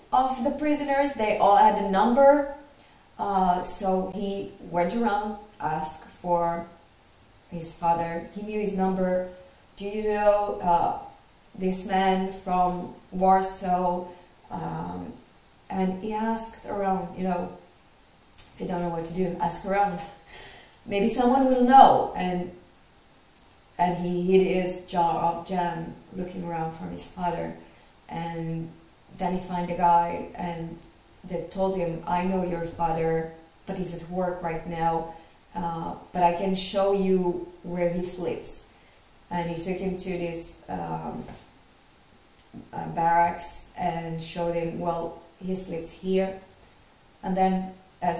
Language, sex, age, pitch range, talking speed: English, female, 30-49, 170-190 Hz, 135 wpm